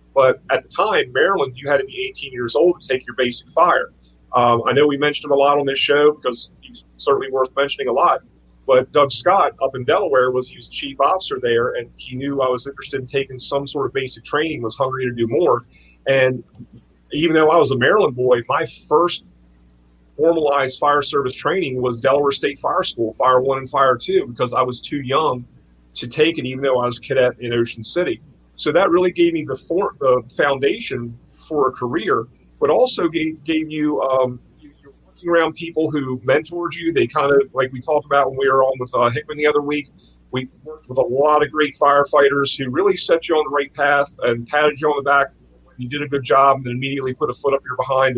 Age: 40-59